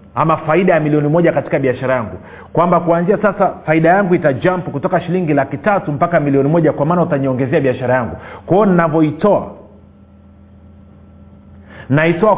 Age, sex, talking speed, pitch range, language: 40-59, male, 140 wpm, 125-180 Hz, Swahili